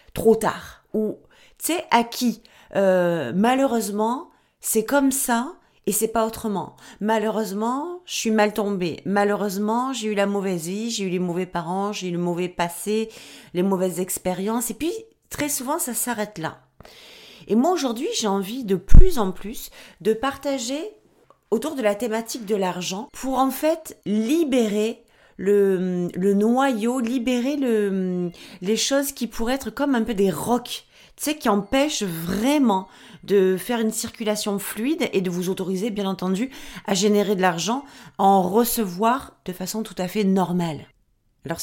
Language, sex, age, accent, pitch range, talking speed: French, female, 40-59, French, 190-235 Hz, 160 wpm